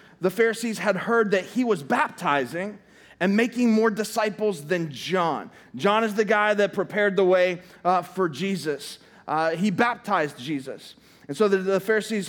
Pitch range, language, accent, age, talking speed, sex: 185-230 Hz, English, American, 30-49, 165 wpm, male